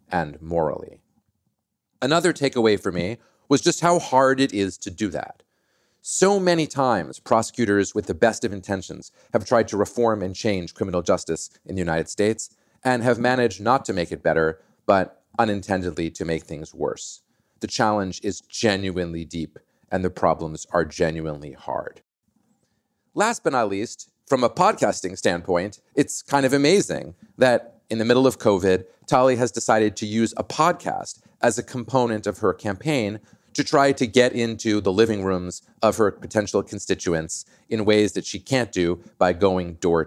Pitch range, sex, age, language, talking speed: 90-125 Hz, male, 30-49, English, 170 wpm